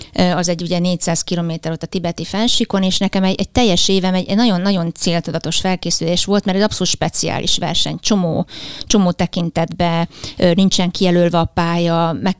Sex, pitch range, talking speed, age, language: female, 175-210 Hz, 165 wpm, 30-49, Hungarian